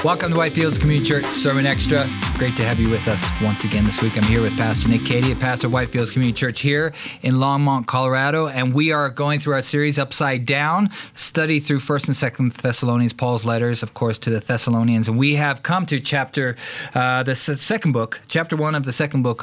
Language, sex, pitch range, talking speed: English, male, 120-150 Hz, 220 wpm